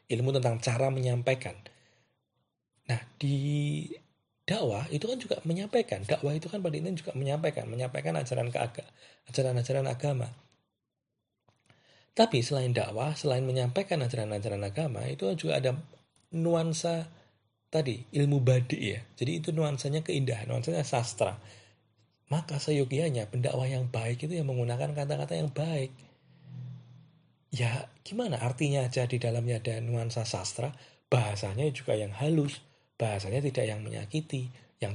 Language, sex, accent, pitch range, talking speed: Indonesian, male, native, 120-150 Hz, 125 wpm